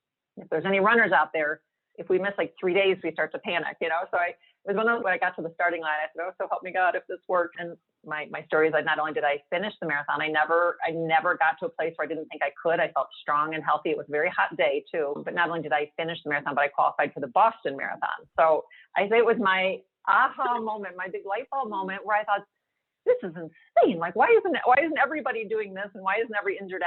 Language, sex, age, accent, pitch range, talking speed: English, female, 40-59, American, 165-215 Hz, 280 wpm